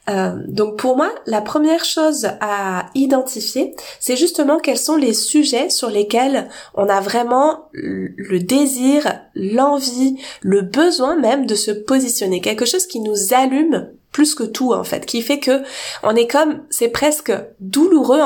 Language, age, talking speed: French, 20-39, 155 wpm